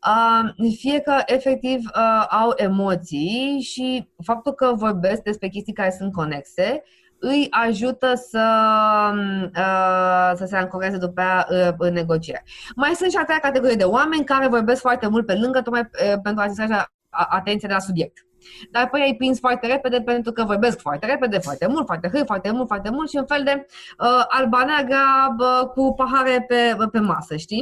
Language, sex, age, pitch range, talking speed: Romanian, female, 20-39, 185-280 Hz, 180 wpm